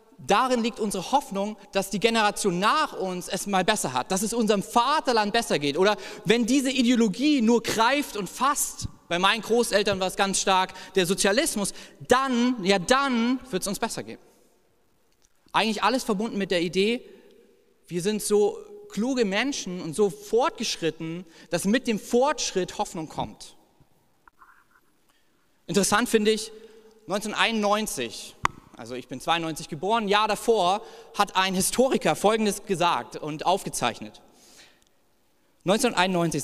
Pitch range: 180-230 Hz